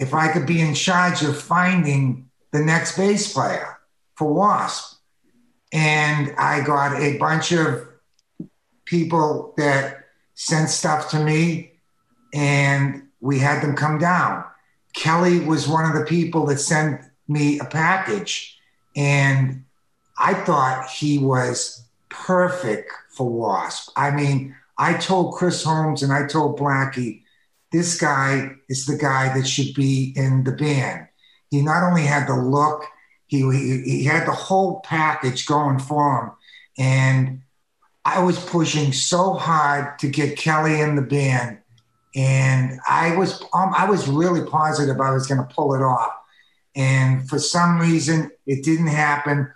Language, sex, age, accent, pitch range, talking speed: English, male, 50-69, American, 135-160 Hz, 150 wpm